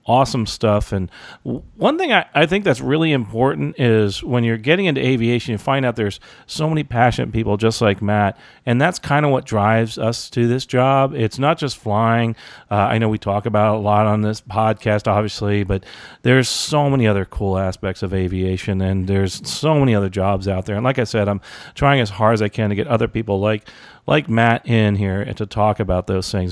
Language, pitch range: English, 105-140 Hz